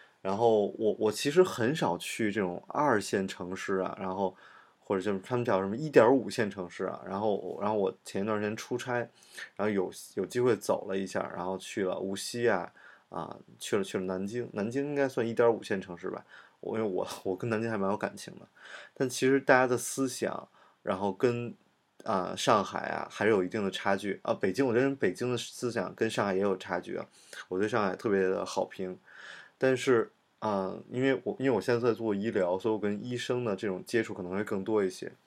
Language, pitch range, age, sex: Chinese, 95-130 Hz, 20-39, male